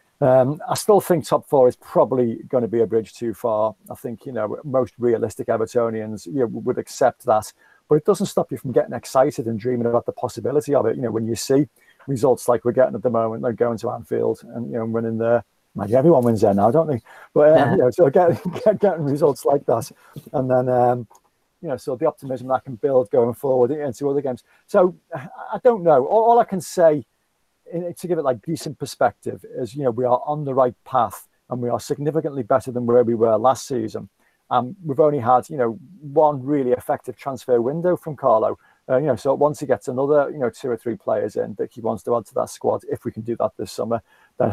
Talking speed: 240 wpm